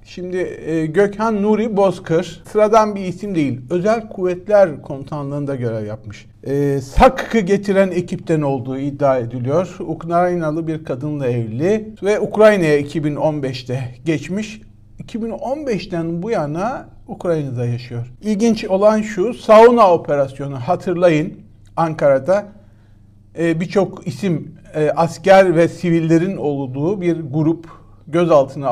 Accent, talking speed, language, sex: native, 105 wpm, Turkish, male